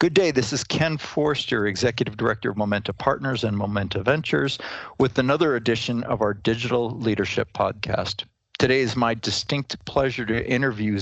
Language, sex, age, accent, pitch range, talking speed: English, male, 50-69, American, 105-125 Hz, 160 wpm